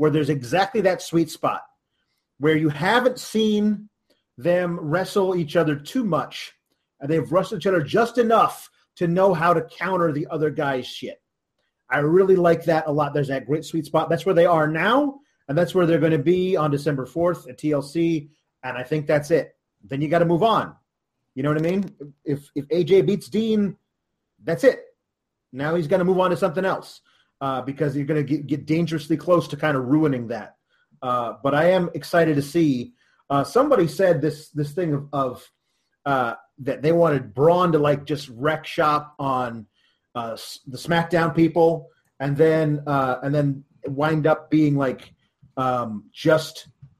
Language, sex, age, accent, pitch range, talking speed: English, male, 30-49, American, 145-180 Hz, 185 wpm